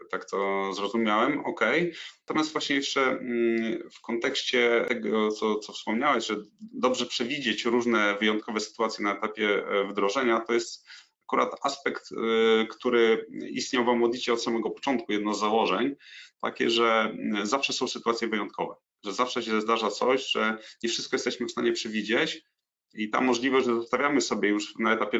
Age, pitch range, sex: 30-49, 105-125 Hz, male